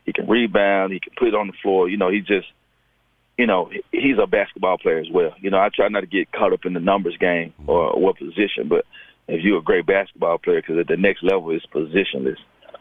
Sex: male